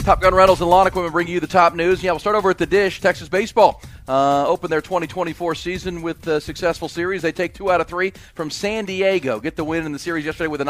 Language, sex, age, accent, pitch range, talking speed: English, male, 40-59, American, 145-180 Hz, 265 wpm